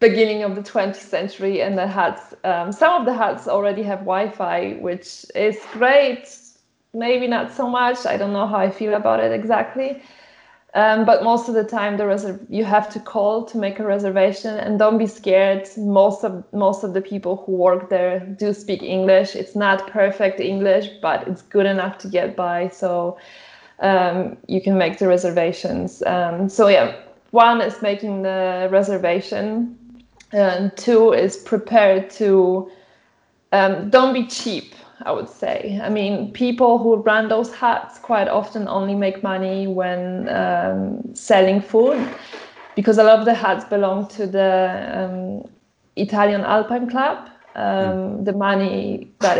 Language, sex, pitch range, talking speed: English, female, 190-220 Hz, 165 wpm